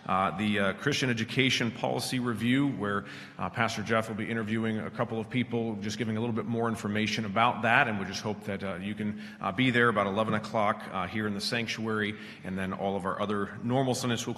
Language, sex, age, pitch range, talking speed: English, male, 40-59, 105-120 Hz, 230 wpm